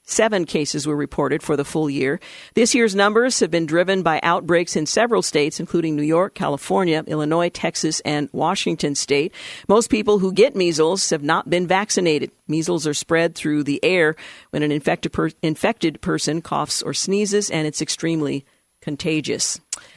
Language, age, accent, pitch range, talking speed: English, 50-69, American, 155-195 Hz, 160 wpm